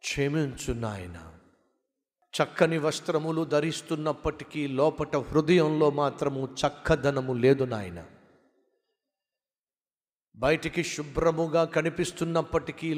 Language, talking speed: Telugu, 65 wpm